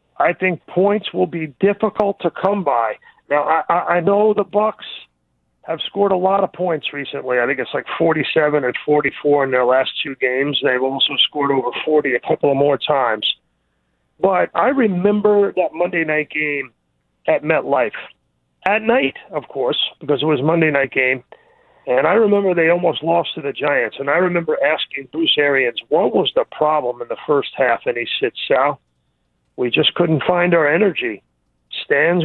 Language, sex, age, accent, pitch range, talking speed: English, male, 40-59, American, 125-185 Hz, 180 wpm